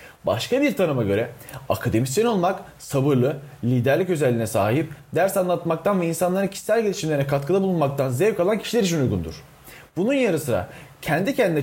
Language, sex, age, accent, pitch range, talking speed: Turkish, male, 30-49, native, 140-200 Hz, 145 wpm